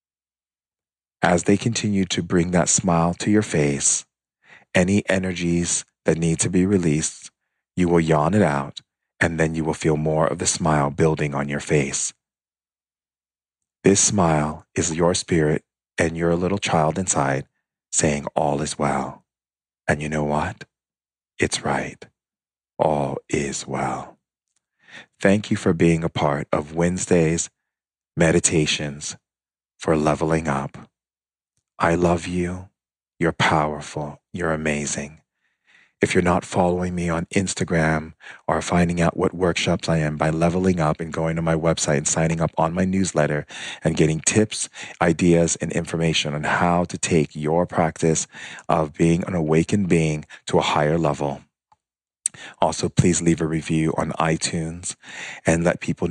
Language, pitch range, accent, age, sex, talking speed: English, 75-85 Hz, American, 40-59, male, 145 wpm